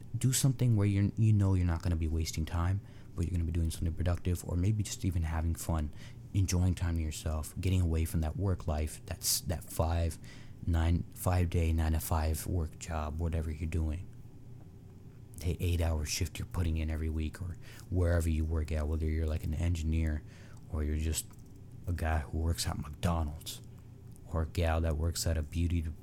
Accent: American